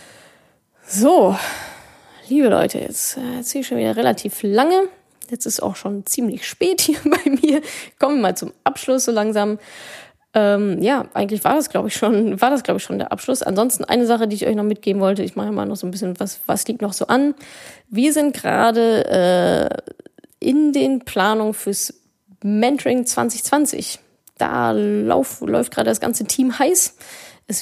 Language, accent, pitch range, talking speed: German, German, 200-255 Hz, 175 wpm